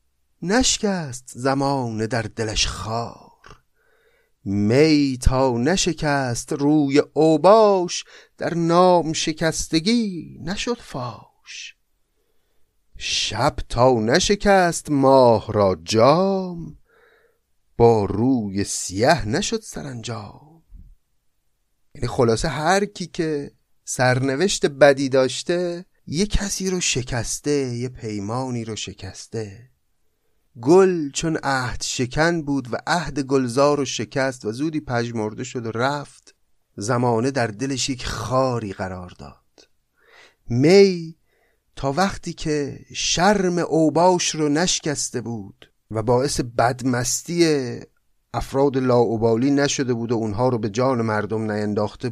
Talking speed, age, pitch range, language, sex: 100 wpm, 30-49, 115-165 Hz, Persian, male